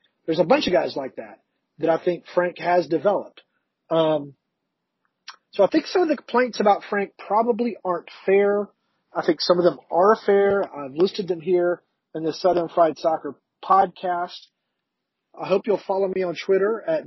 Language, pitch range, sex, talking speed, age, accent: English, 165-200 Hz, male, 180 wpm, 40-59, American